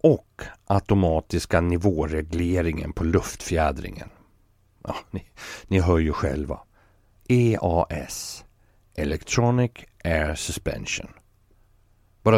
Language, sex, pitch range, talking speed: Swedish, male, 85-105 Hz, 80 wpm